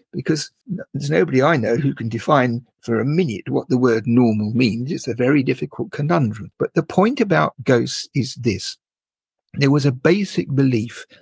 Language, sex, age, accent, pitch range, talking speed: English, male, 50-69, British, 120-160 Hz, 175 wpm